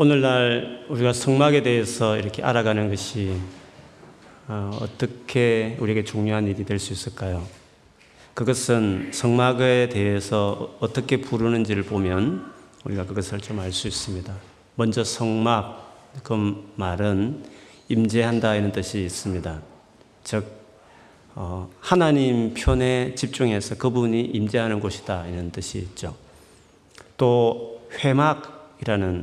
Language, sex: Korean, male